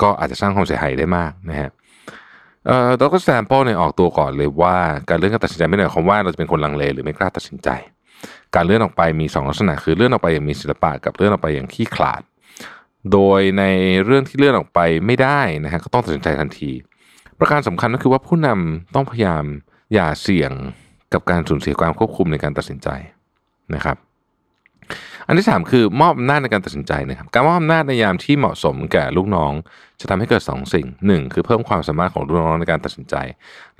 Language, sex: Thai, male